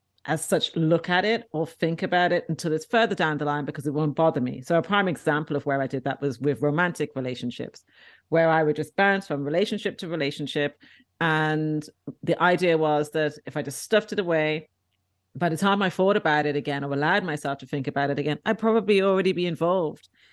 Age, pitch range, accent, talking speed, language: 40-59, 150-185 Hz, British, 220 wpm, English